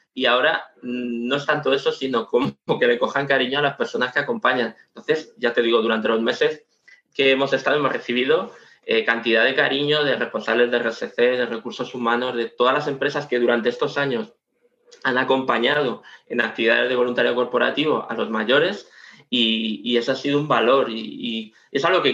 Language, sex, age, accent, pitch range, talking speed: Spanish, male, 20-39, Spanish, 120-160 Hz, 190 wpm